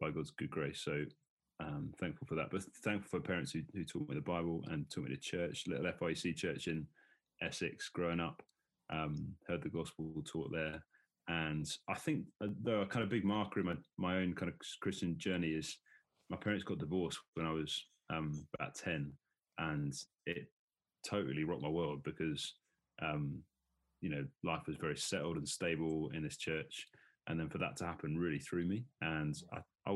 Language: English